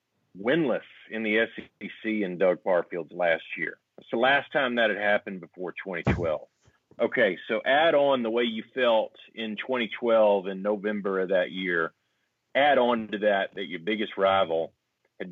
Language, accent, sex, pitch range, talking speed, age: English, American, male, 100-120 Hz, 165 wpm, 40-59